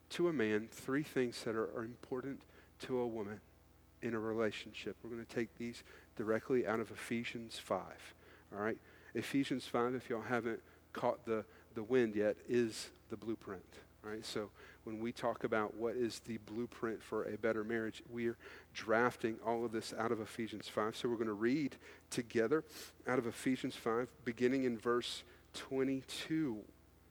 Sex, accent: male, American